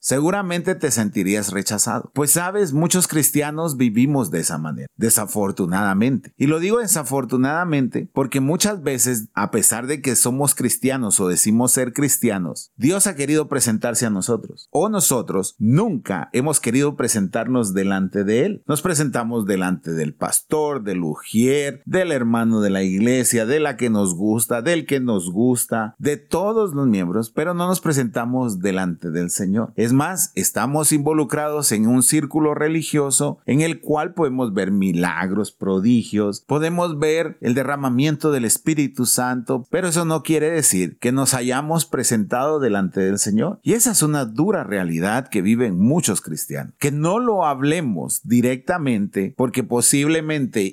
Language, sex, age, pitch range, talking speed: Spanish, male, 40-59, 110-155 Hz, 150 wpm